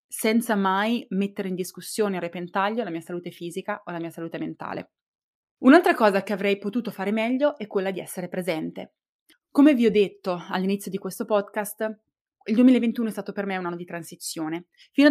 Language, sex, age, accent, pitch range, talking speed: Italian, female, 20-39, native, 185-225 Hz, 185 wpm